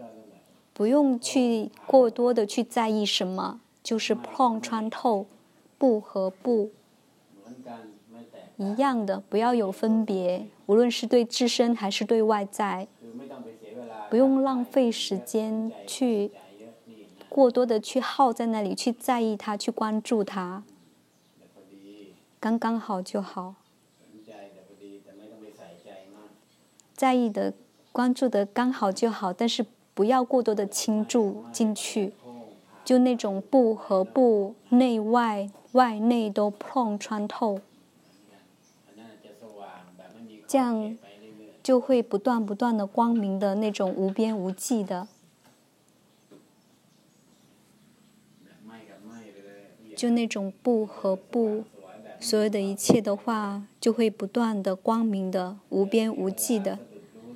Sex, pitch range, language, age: male, 185-235 Hz, English, 20-39